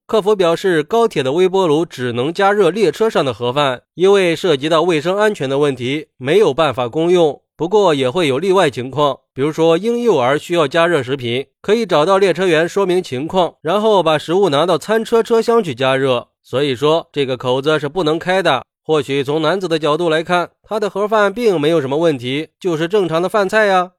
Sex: male